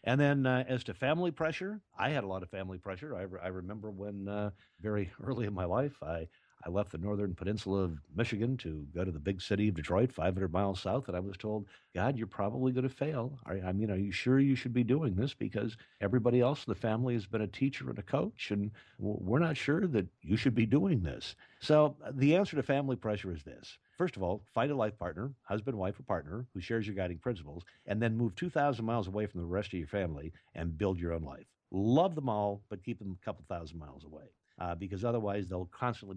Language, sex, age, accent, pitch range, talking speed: English, male, 50-69, American, 95-130 Hz, 240 wpm